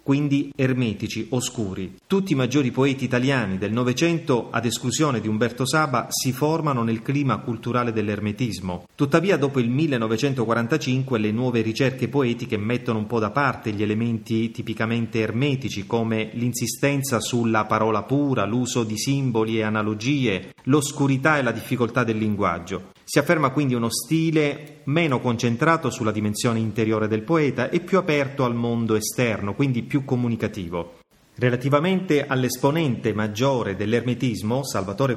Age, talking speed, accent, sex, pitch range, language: 30-49, 140 wpm, native, male, 110-140 Hz, Italian